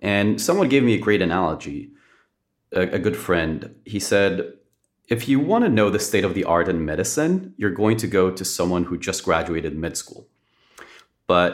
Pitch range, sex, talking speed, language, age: 90-115 Hz, male, 185 wpm, English, 30-49